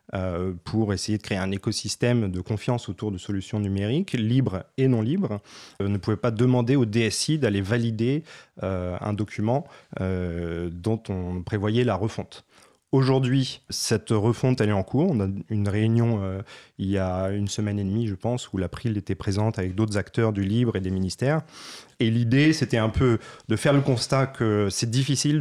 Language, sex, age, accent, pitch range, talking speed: French, male, 30-49, French, 100-130 Hz, 180 wpm